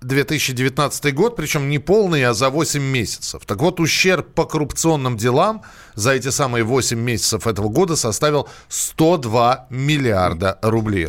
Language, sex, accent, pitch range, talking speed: Russian, male, native, 110-160 Hz, 140 wpm